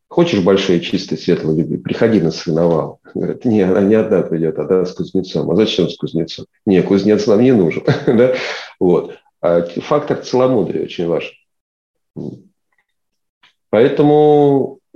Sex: male